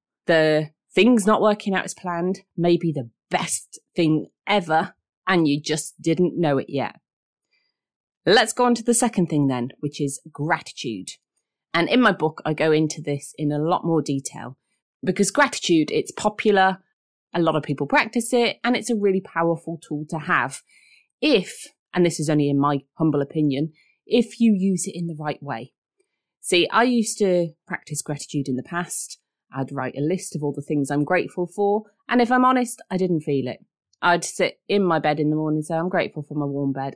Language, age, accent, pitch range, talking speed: English, 30-49, British, 155-215 Hz, 200 wpm